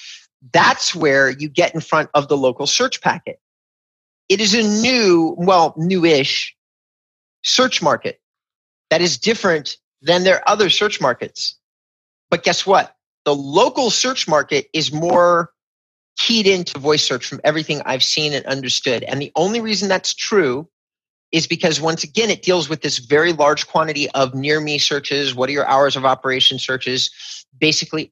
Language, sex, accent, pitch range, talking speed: English, male, American, 140-185 Hz, 160 wpm